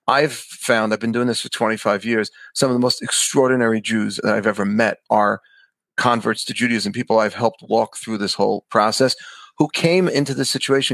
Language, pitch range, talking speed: English, 110-135 Hz, 195 wpm